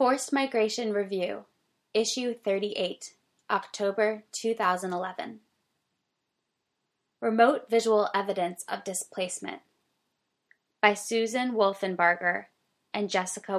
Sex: female